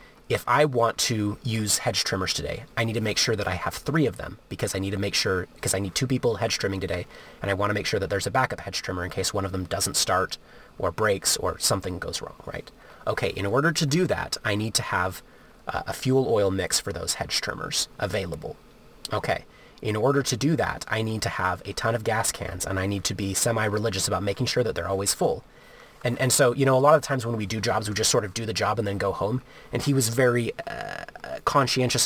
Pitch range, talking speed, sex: 100-125 Hz, 255 wpm, male